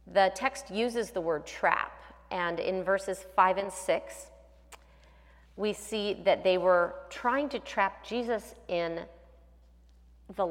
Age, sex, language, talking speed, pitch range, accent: 30-49, female, English, 130 wpm, 165-210 Hz, American